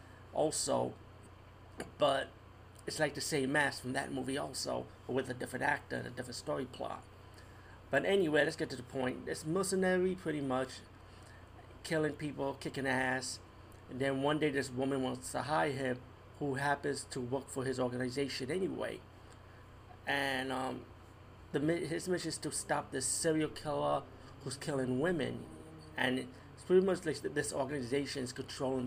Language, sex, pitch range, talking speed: English, male, 105-150 Hz, 160 wpm